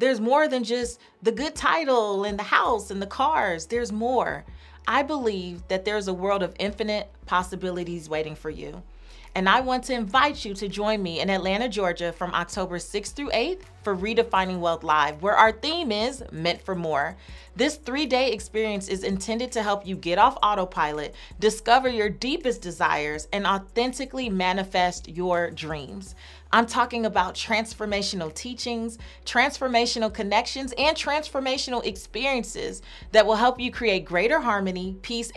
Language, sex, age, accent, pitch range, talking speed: English, female, 30-49, American, 185-240 Hz, 160 wpm